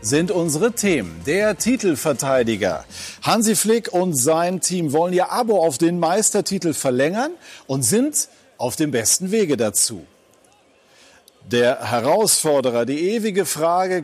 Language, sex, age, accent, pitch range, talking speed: German, male, 40-59, German, 135-185 Hz, 125 wpm